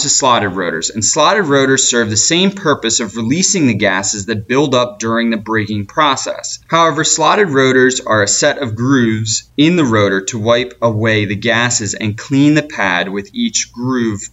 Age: 20-39